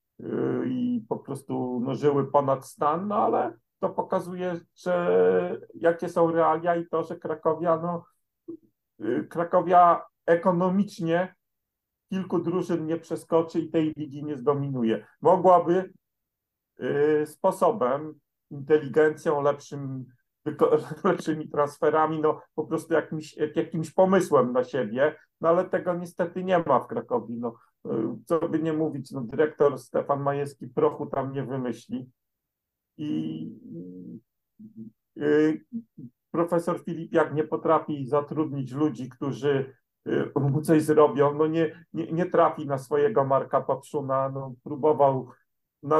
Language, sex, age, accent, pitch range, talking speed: Polish, male, 50-69, native, 135-165 Hz, 120 wpm